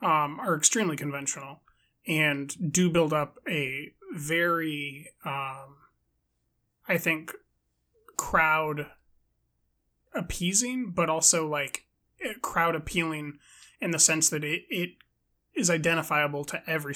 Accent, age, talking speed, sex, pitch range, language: American, 20-39, 105 wpm, male, 145-165 Hz, English